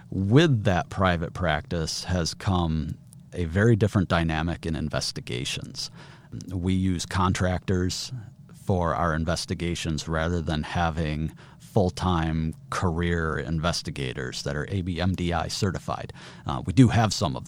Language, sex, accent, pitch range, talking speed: English, male, American, 85-105 Hz, 115 wpm